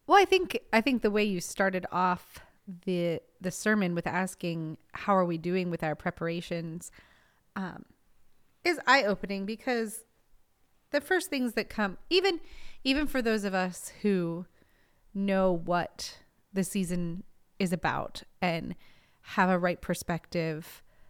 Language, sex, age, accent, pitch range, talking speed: English, female, 30-49, American, 170-210 Hz, 140 wpm